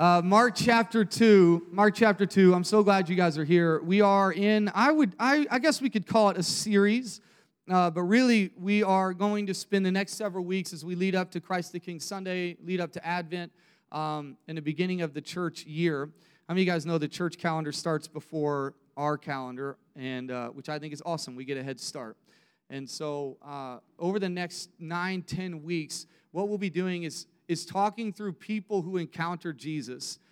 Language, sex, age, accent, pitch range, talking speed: English, male, 30-49, American, 165-205 Hz, 210 wpm